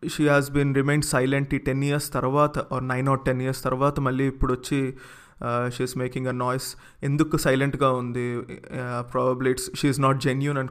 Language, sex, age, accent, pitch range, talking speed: English, male, 30-49, Indian, 130-150 Hz, 175 wpm